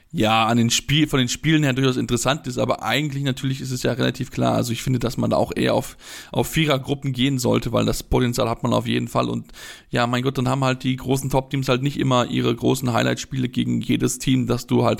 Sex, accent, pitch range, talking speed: male, German, 115-135 Hz, 250 wpm